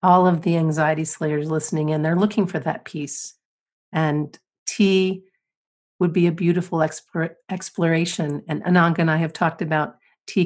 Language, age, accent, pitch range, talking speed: English, 50-69, American, 150-180 Hz, 160 wpm